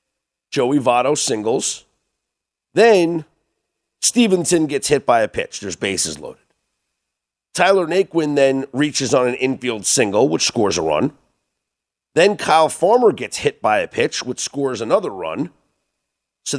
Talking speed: 140 wpm